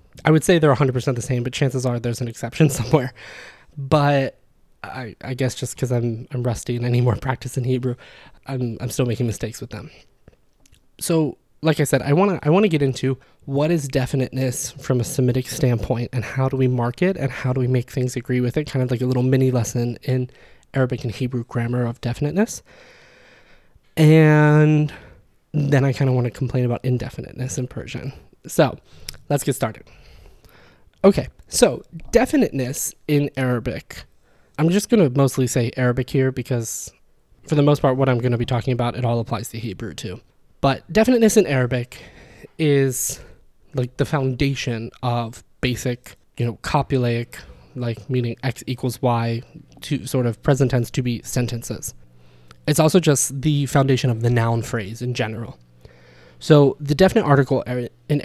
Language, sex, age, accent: English, male, 20-39, American